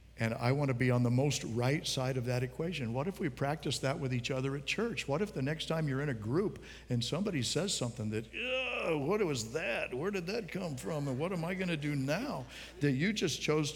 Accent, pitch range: American, 120-170 Hz